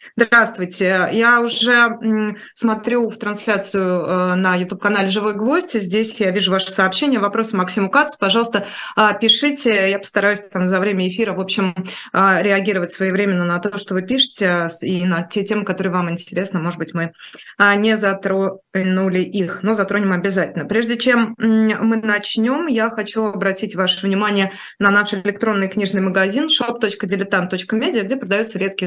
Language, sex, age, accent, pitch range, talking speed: Russian, female, 20-39, native, 185-220 Hz, 145 wpm